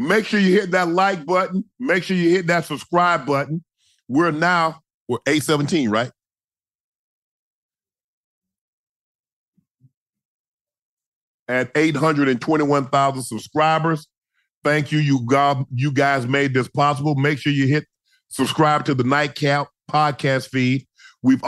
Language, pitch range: English, 135-155 Hz